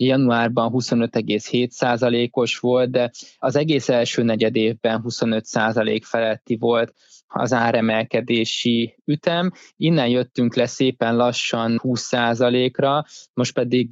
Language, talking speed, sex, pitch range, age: Hungarian, 100 wpm, male, 115-130 Hz, 20-39